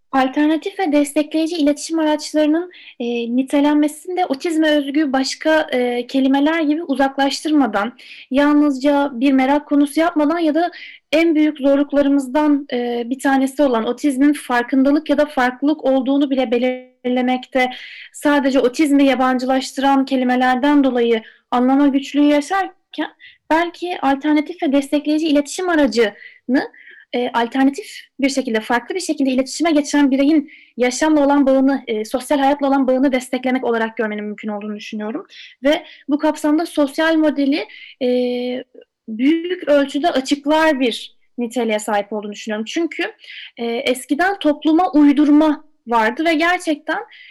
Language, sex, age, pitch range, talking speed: Turkish, female, 10-29, 255-305 Hz, 120 wpm